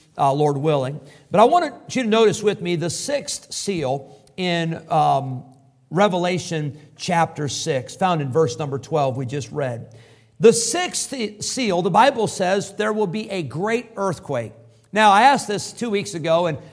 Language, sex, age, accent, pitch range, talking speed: English, male, 50-69, American, 145-205 Hz, 170 wpm